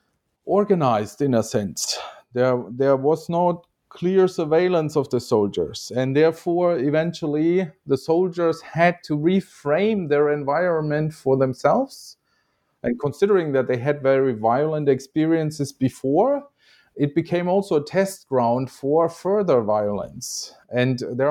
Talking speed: 125 wpm